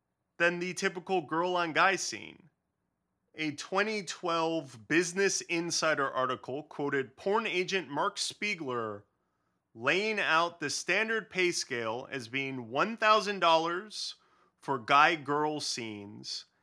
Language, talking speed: English, 95 wpm